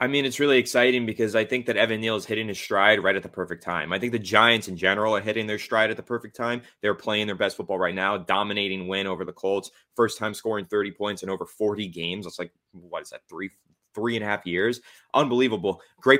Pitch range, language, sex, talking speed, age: 100-120 Hz, English, male, 255 wpm, 20-39